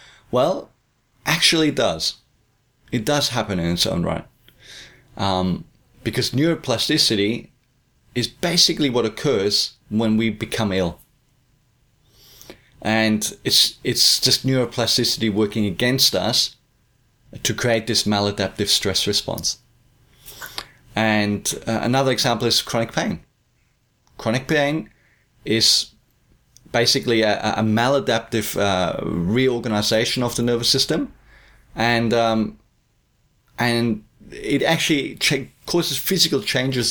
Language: English